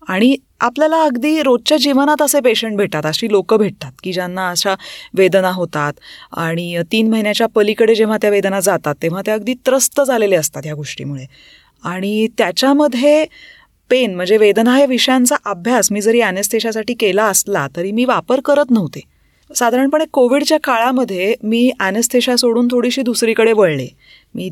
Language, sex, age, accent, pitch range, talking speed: Marathi, female, 30-49, native, 185-255 Hz, 145 wpm